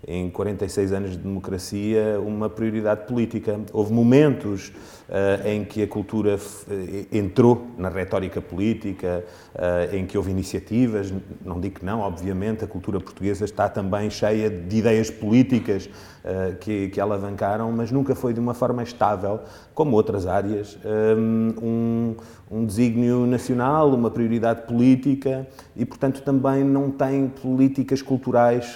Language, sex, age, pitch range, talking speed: Portuguese, male, 30-49, 105-125 Hz, 140 wpm